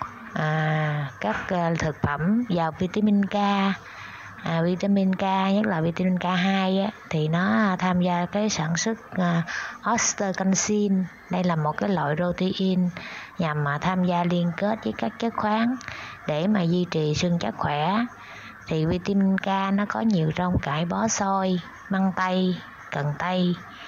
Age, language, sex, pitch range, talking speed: 20-39, Vietnamese, female, 160-205 Hz, 160 wpm